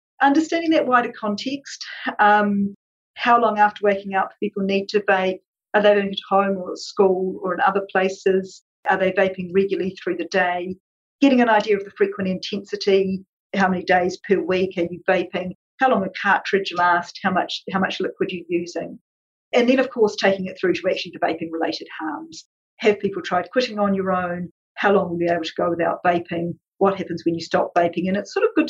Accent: Australian